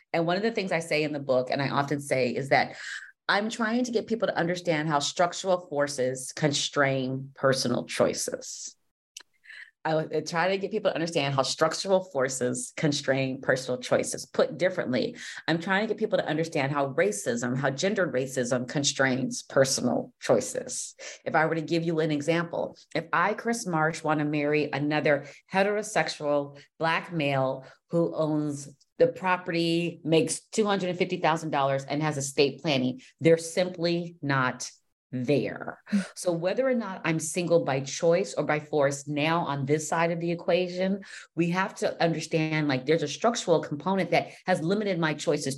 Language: English